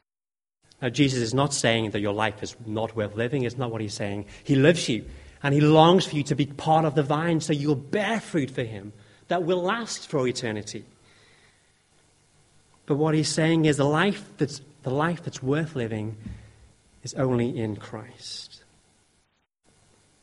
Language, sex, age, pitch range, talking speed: English, male, 30-49, 105-140 Hz, 175 wpm